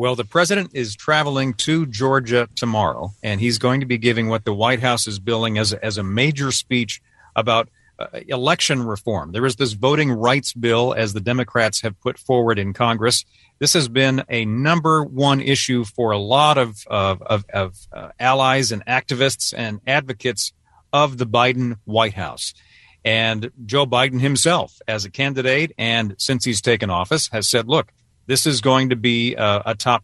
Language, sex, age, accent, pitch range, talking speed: English, male, 40-59, American, 110-135 Hz, 180 wpm